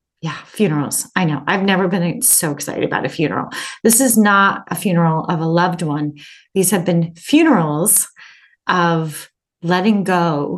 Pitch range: 170-245 Hz